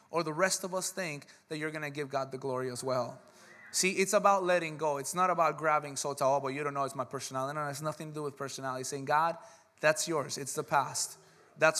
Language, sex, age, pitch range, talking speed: English, male, 20-39, 145-200 Hz, 250 wpm